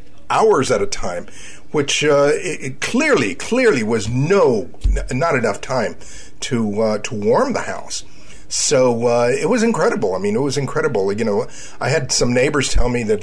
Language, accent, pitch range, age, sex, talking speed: English, American, 120-155 Hz, 50-69, male, 185 wpm